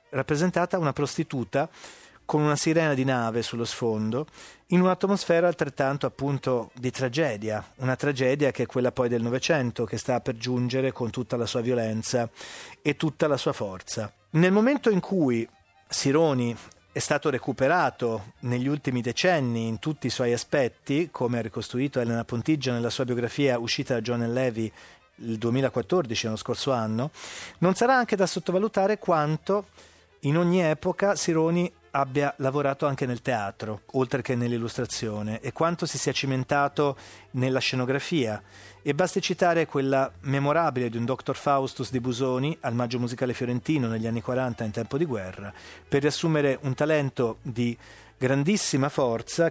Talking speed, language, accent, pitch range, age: 150 wpm, Italian, native, 120-150 Hz, 30-49